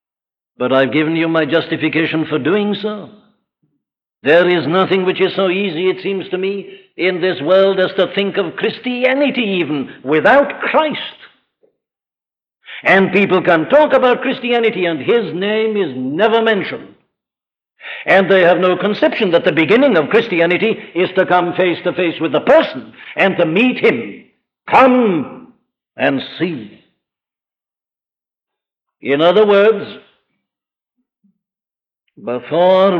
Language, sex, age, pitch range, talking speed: English, male, 60-79, 170-210 Hz, 135 wpm